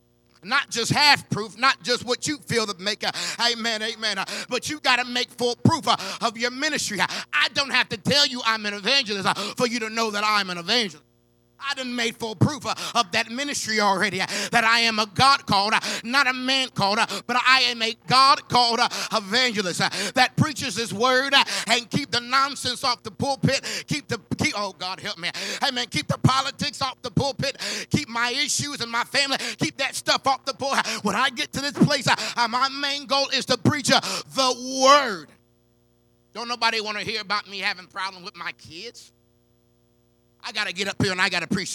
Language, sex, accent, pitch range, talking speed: English, male, American, 190-250 Hz, 200 wpm